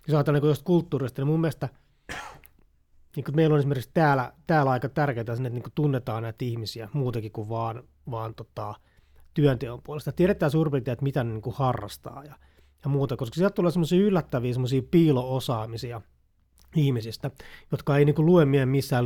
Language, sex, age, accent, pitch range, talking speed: Finnish, male, 30-49, native, 120-155 Hz, 160 wpm